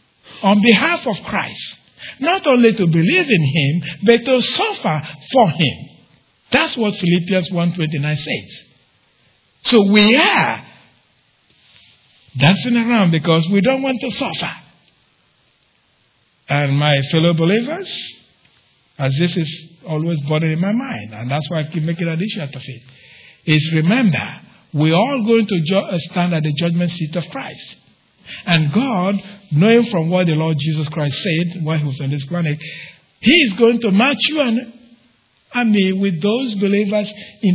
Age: 60-79